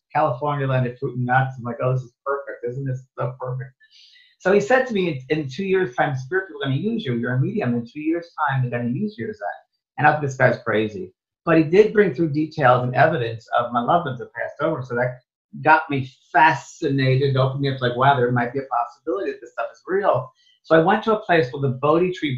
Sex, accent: male, American